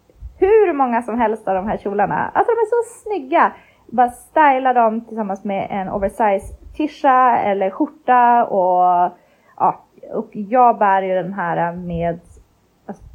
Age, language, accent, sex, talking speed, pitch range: 20-39, Swedish, native, female, 150 wpm, 195-270 Hz